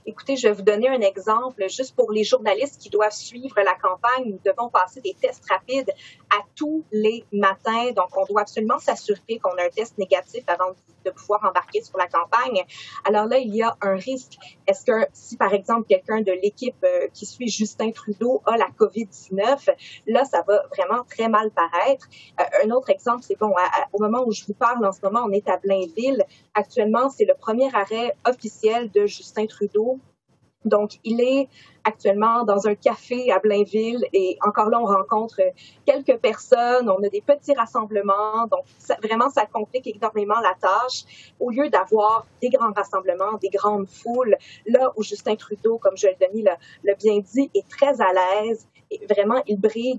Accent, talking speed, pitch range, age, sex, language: Canadian, 185 wpm, 200-255 Hz, 30-49, female, French